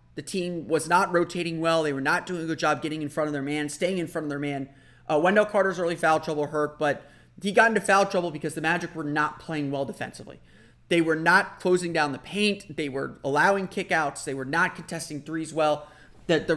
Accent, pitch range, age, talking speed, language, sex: American, 145-180 Hz, 30-49, 235 wpm, English, male